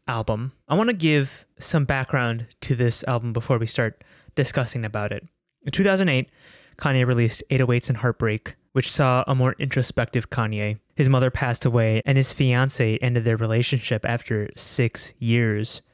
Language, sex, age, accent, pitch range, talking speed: English, male, 20-39, American, 115-135 Hz, 160 wpm